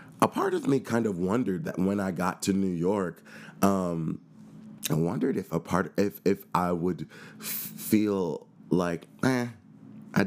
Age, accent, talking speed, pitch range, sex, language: 30-49, American, 170 wpm, 85-110 Hz, male, English